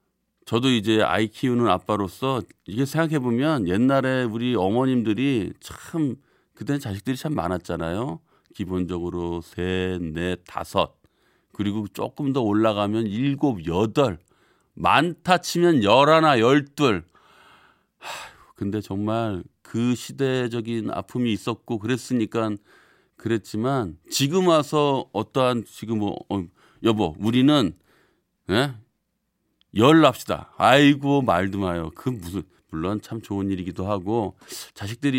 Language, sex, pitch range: Korean, male, 100-140 Hz